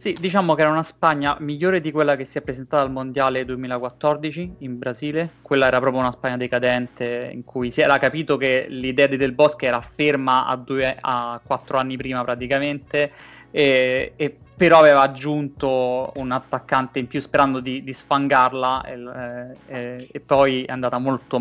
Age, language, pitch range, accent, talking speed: 20-39, Italian, 130-145 Hz, native, 175 wpm